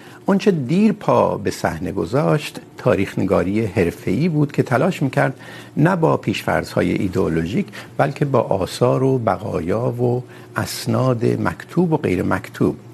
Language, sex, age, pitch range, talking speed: Urdu, male, 60-79, 100-150 Hz, 130 wpm